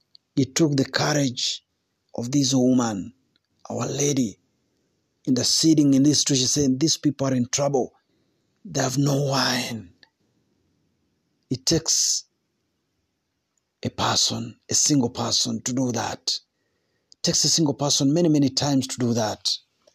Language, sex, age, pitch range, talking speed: Swahili, male, 50-69, 130-170 Hz, 140 wpm